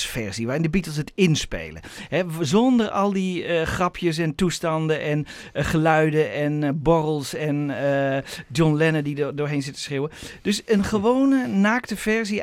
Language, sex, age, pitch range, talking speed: Dutch, male, 50-69, 150-195 Hz, 170 wpm